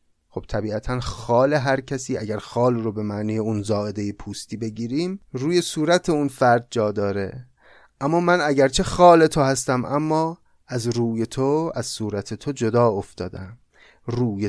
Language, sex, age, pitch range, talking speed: Persian, male, 30-49, 115-165 Hz, 150 wpm